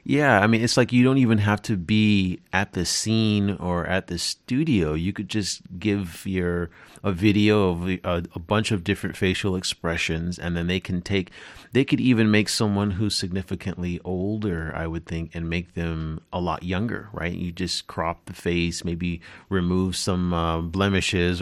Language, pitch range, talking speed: English, 85-100 Hz, 185 wpm